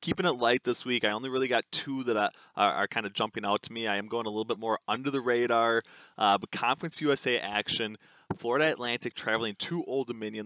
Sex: male